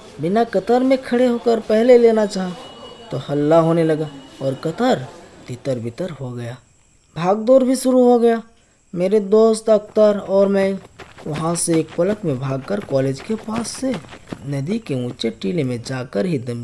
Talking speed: 170 wpm